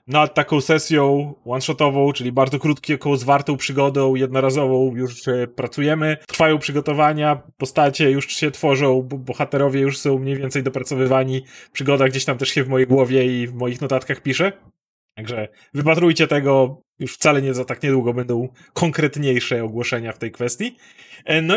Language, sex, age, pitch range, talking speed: Polish, male, 30-49, 130-160 Hz, 150 wpm